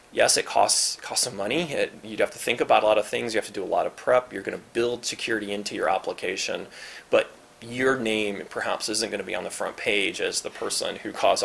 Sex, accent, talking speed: male, American, 255 wpm